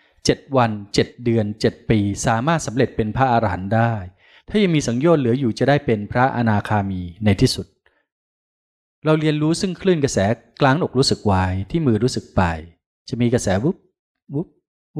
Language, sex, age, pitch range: Thai, male, 20-39, 100-135 Hz